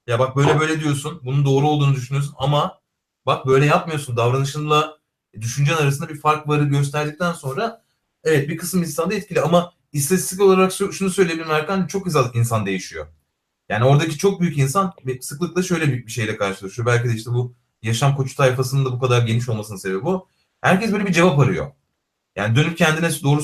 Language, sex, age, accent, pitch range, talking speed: Turkish, male, 30-49, native, 130-175 Hz, 180 wpm